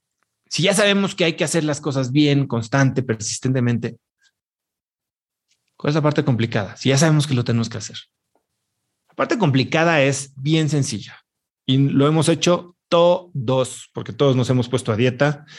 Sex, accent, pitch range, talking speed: male, Mexican, 130-180 Hz, 165 wpm